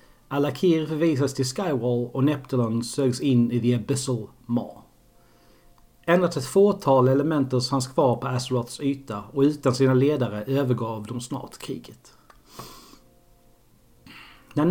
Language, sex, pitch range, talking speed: Swedish, male, 125-145 Hz, 120 wpm